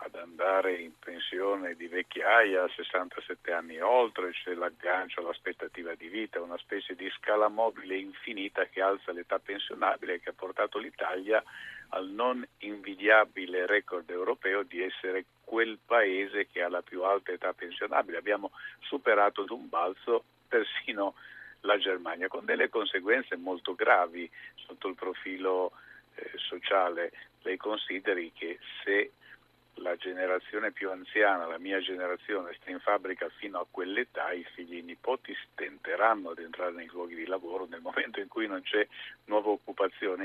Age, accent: 50-69, native